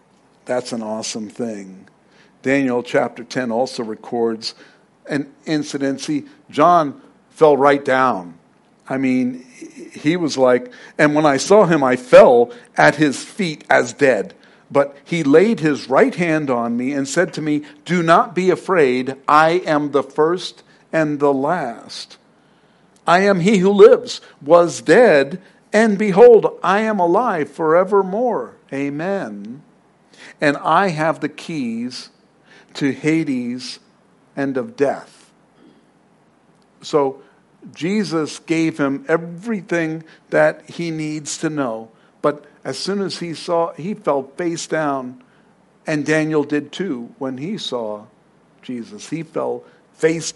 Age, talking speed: 50-69, 130 wpm